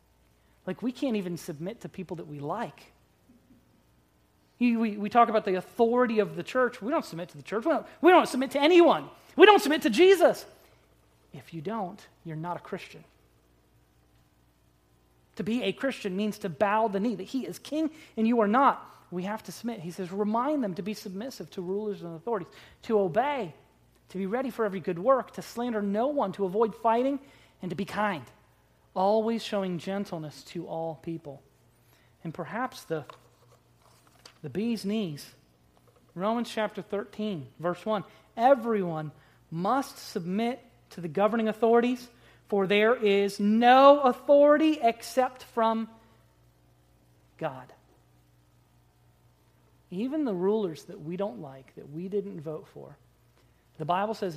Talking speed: 155 wpm